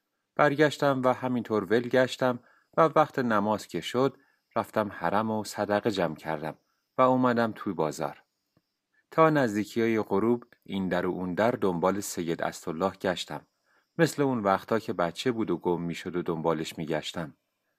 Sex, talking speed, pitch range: male, 155 wpm, 90-130 Hz